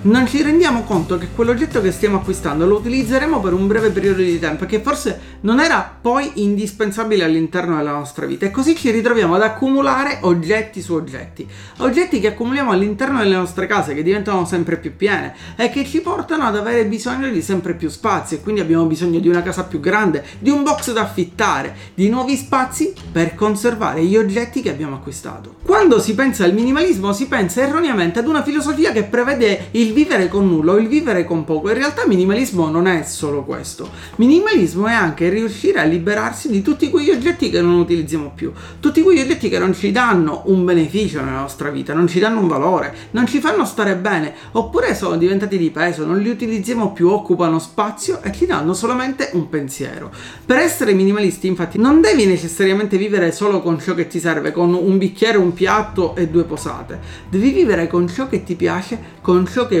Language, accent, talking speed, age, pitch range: Italian, native, 200 wpm, 40-59, 175-245 Hz